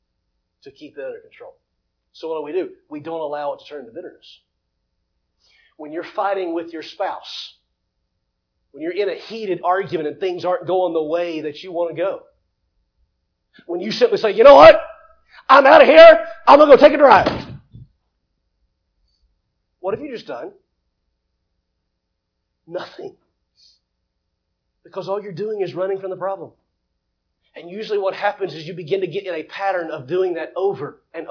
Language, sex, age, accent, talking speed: English, male, 40-59, American, 175 wpm